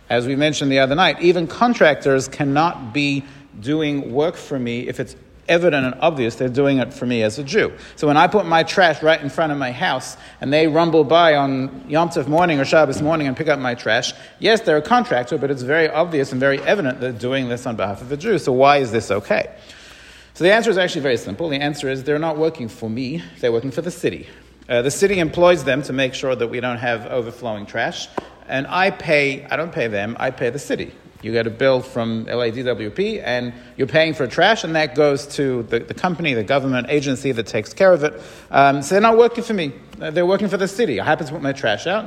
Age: 40-59